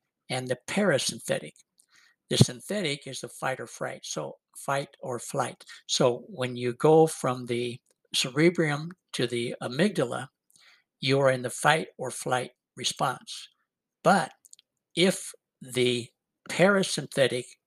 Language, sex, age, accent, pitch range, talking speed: English, male, 60-79, American, 125-165 Hz, 120 wpm